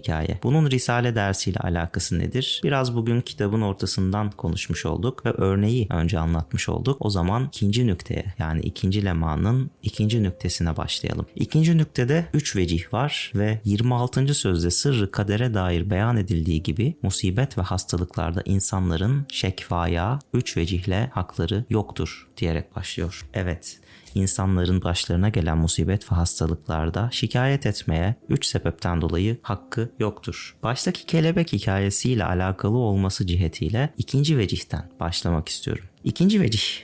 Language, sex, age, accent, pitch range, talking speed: Turkish, male, 30-49, native, 90-120 Hz, 125 wpm